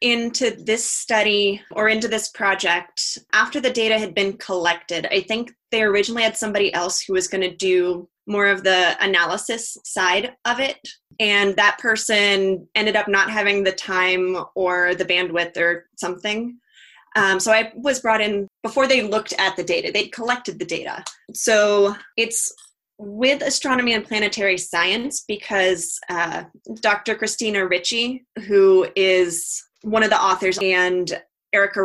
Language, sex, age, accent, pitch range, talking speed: English, female, 20-39, American, 185-220 Hz, 155 wpm